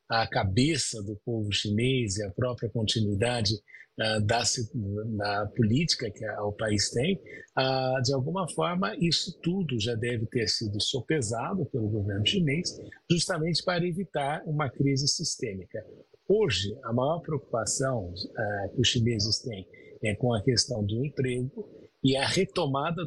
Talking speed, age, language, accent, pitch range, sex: 145 wpm, 50-69, Portuguese, Brazilian, 110-140 Hz, male